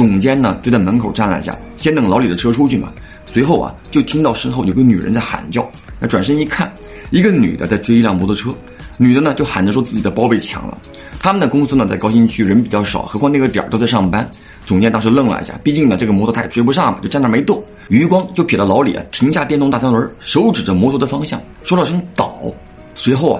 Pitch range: 95-135 Hz